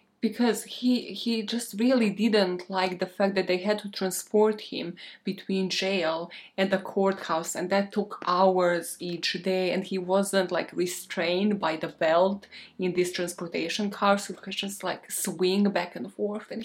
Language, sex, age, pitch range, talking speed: English, female, 20-39, 185-225 Hz, 165 wpm